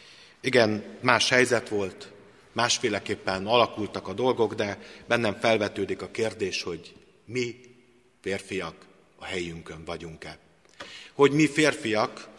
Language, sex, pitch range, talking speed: Hungarian, male, 100-120 Hz, 105 wpm